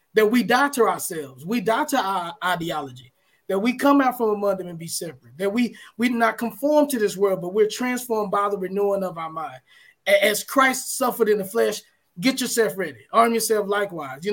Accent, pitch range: American, 200-270 Hz